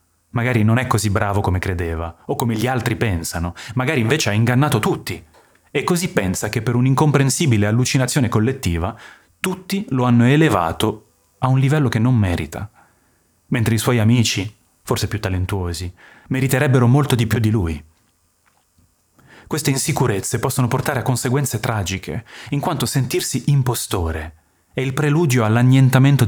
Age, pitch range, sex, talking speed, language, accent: 30-49, 90-135 Hz, male, 145 wpm, Italian, native